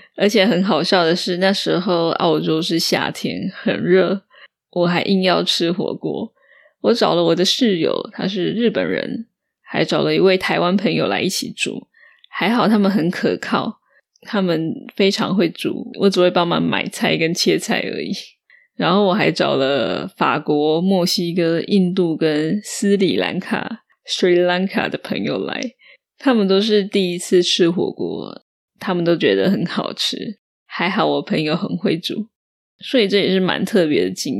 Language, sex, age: Chinese, female, 20-39